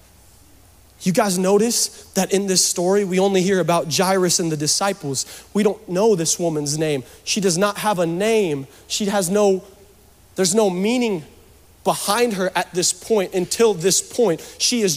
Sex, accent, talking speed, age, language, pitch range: male, American, 170 wpm, 30-49, English, 175-255 Hz